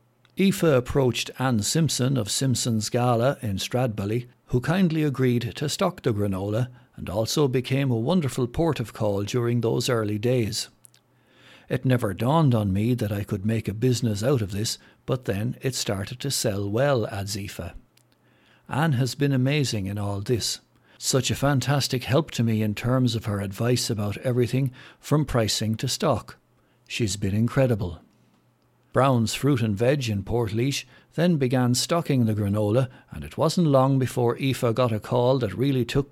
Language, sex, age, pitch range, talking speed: English, male, 60-79, 110-135 Hz, 170 wpm